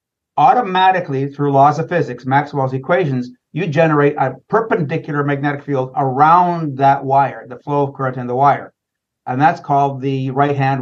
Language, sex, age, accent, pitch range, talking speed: English, male, 50-69, American, 135-160 Hz, 155 wpm